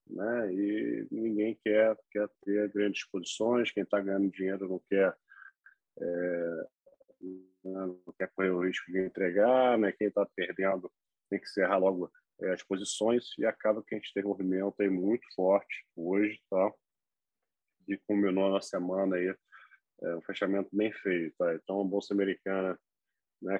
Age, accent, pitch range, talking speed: 20-39, Brazilian, 95-105 Hz, 160 wpm